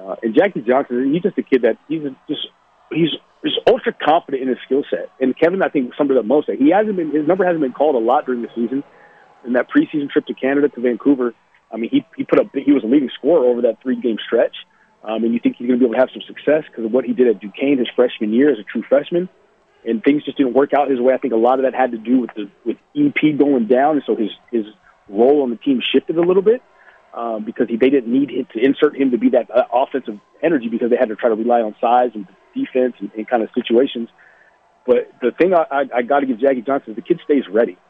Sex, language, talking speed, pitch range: male, English, 270 wpm, 120-155 Hz